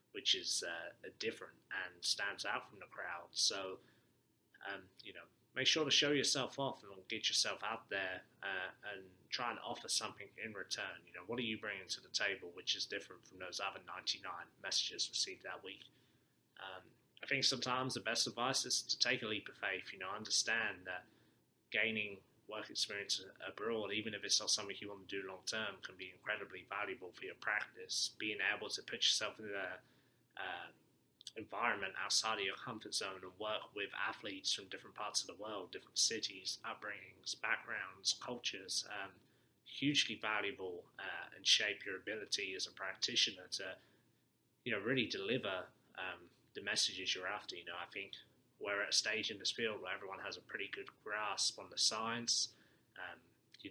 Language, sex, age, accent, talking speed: English, male, 20-39, British, 185 wpm